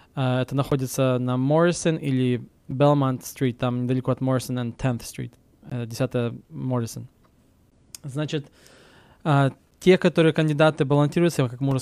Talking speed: 135 wpm